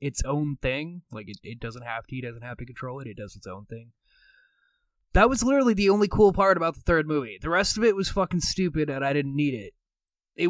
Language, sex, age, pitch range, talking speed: English, male, 20-39, 120-150 Hz, 250 wpm